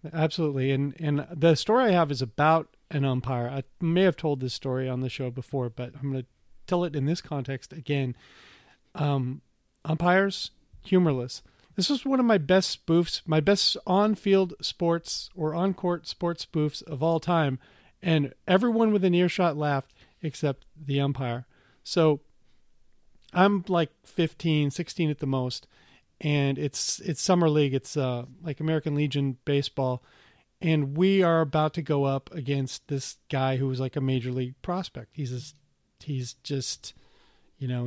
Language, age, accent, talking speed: English, 40-59, American, 165 wpm